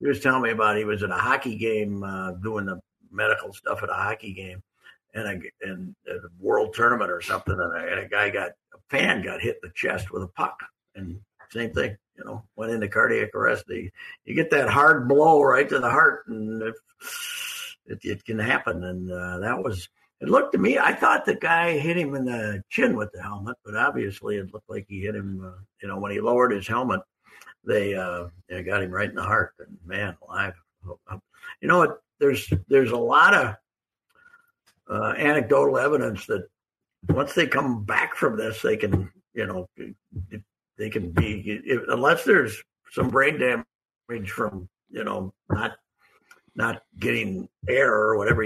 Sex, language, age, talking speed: male, English, 60-79, 195 wpm